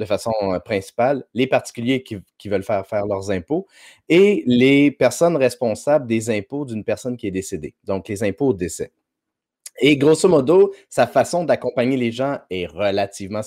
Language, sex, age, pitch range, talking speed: French, male, 30-49, 110-135 Hz, 170 wpm